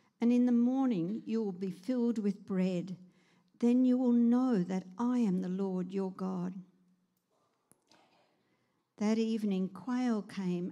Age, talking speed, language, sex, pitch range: 50-69, 140 wpm, English, female, 185-230 Hz